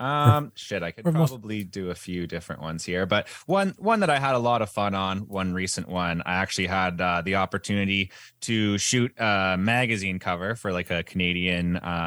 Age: 20-39